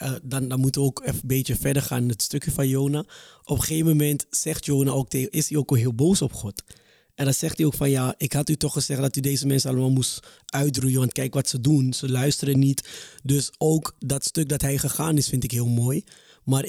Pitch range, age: 130-145 Hz, 20-39